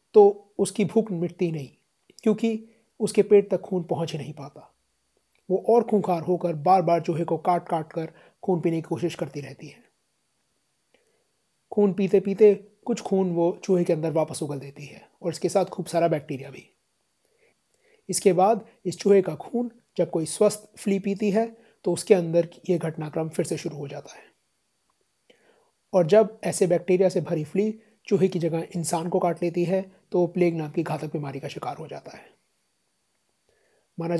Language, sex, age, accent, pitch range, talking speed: Hindi, male, 30-49, native, 165-195 Hz, 175 wpm